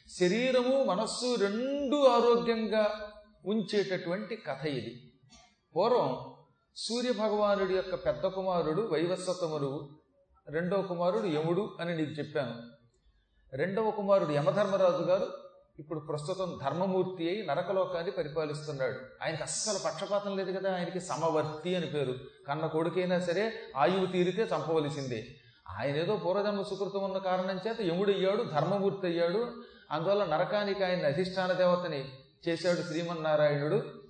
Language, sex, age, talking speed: Telugu, male, 40-59, 105 wpm